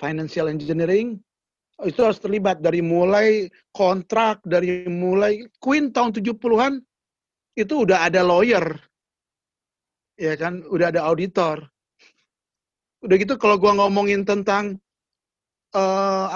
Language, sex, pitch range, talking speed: Indonesian, male, 175-215 Hz, 105 wpm